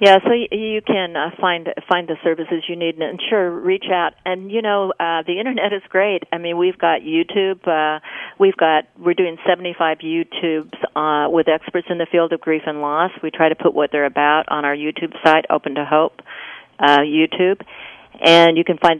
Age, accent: 50-69, American